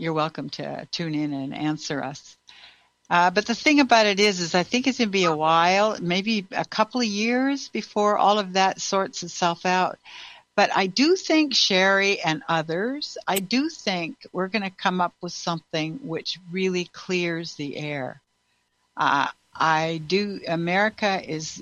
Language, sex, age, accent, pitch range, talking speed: English, female, 60-79, American, 145-190 Hz, 175 wpm